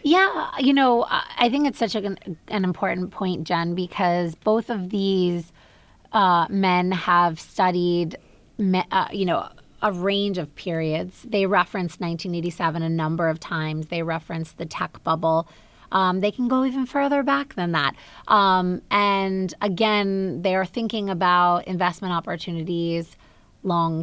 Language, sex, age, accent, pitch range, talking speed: English, female, 20-39, American, 165-200 Hz, 140 wpm